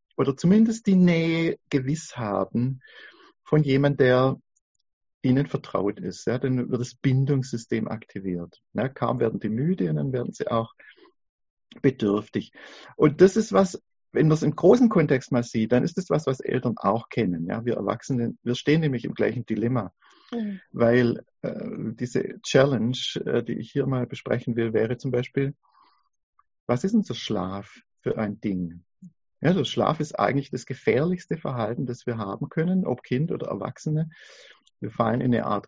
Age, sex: 50-69, male